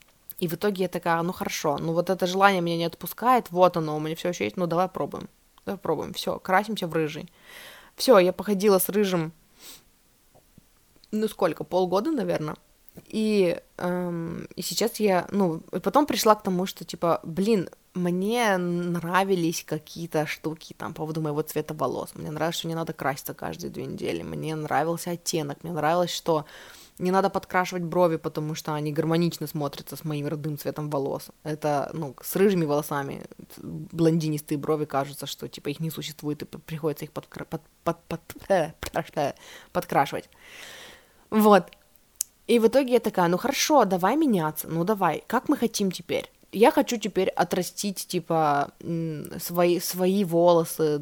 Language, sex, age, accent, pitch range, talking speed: Russian, female, 20-39, native, 155-190 Hz, 160 wpm